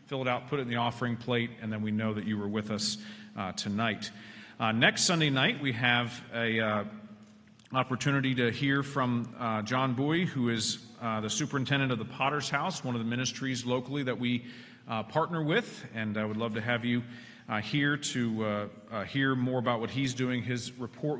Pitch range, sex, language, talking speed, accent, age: 110-130 Hz, male, English, 205 wpm, American, 40-59